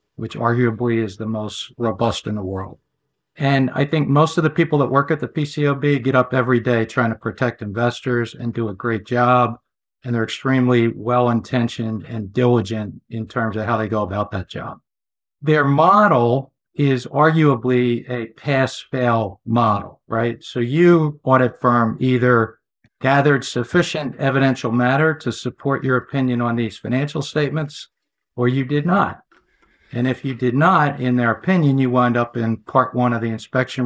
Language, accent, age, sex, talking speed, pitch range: English, American, 60-79, male, 170 wpm, 115-140 Hz